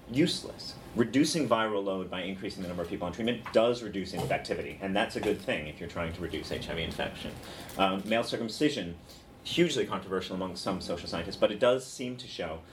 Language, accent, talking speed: English, American, 200 wpm